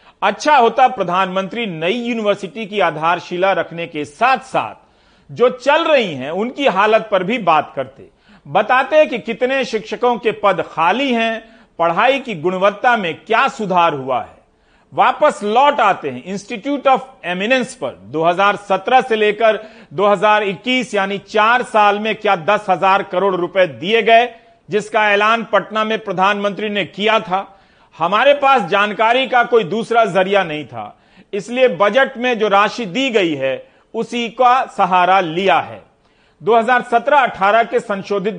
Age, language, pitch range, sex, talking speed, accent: 40-59, Hindi, 190-230 Hz, male, 145 wpm, native